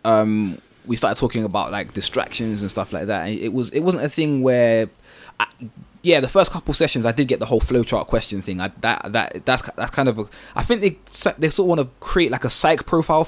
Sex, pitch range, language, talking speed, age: male, 105-135 Hz, English, 245 wpm, 20-39